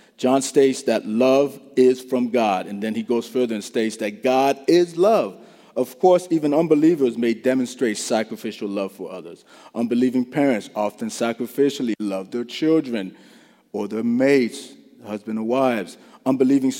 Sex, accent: male, American